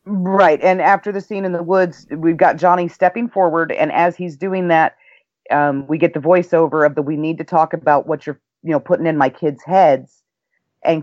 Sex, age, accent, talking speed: female, 40-59, American, 220 wpm